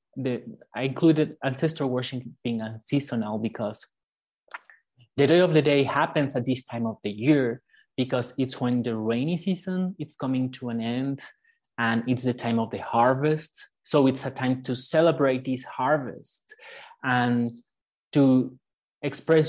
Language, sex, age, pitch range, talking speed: English, male, 30-49, 125-155 Hz, 155 wpm